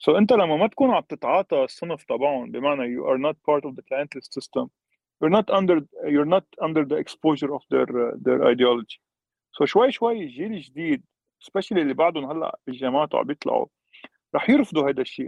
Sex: male